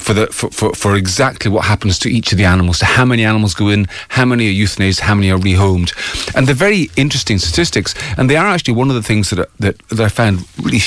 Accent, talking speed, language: British, 260 wpm, English